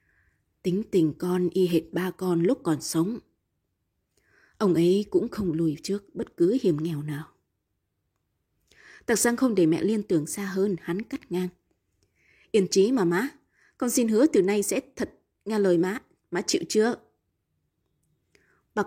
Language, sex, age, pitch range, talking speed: Vietnamese, female, 20-39, 170-230 Hz, 160 wpm